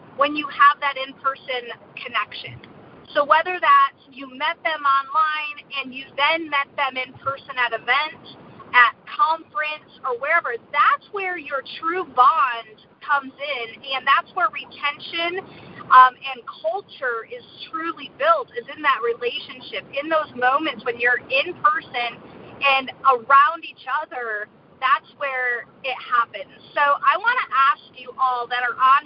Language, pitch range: English, 255-325 Hz